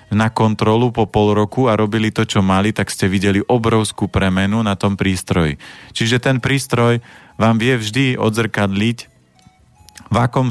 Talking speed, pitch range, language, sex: 155 wpm, 100-115 Hz, Slovak, male